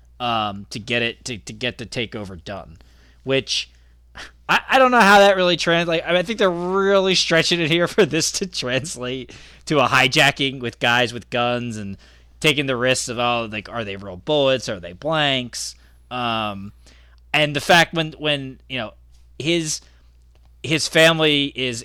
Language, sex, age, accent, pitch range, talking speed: English, male, 20-39, American, 95-130 Hz, 180 wpm